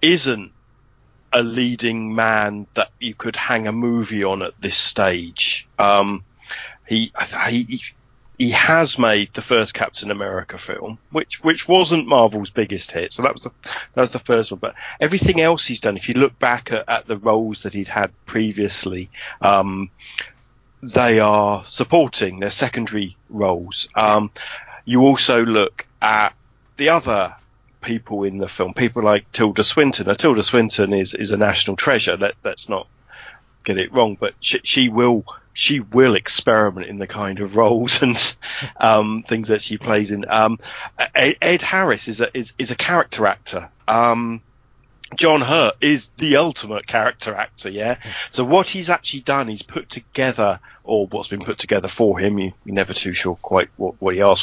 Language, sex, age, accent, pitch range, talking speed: English, male, 40-59, British, 105-125 Hz, 170 wpm